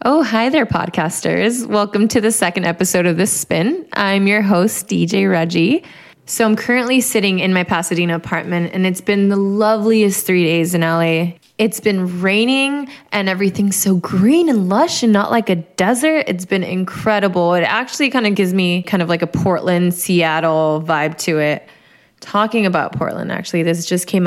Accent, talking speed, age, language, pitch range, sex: American, 180 wpm, 20-39, English, 175-220 Hz, female